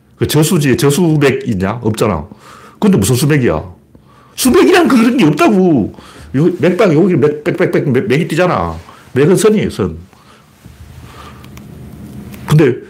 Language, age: Korean, 60-79